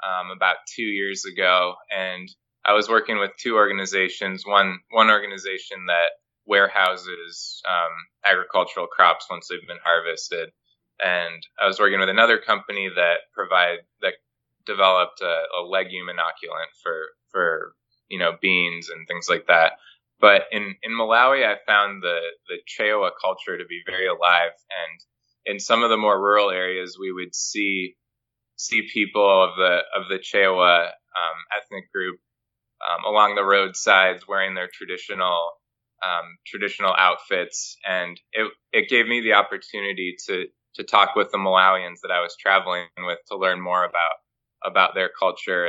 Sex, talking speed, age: male, 155 wpm, 20-39